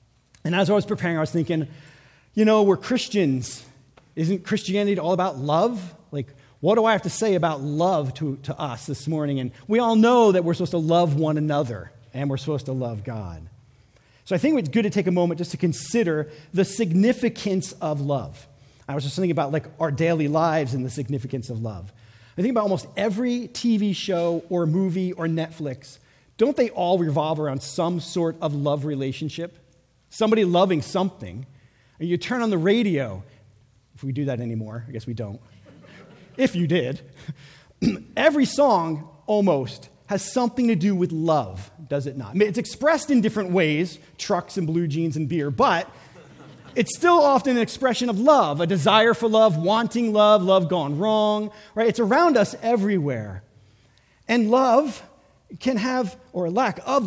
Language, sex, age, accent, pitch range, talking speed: English, male, 40-59, American, 140-210 Hz, 180 wpm